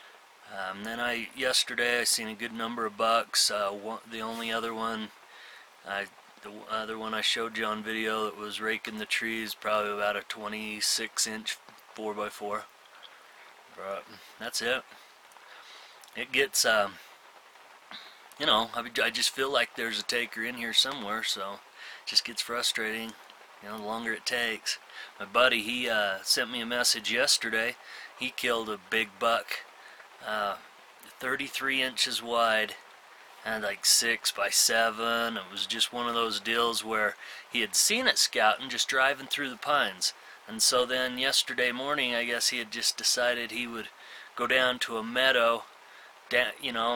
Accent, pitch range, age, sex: American, 110-120 Hz, 30-49, male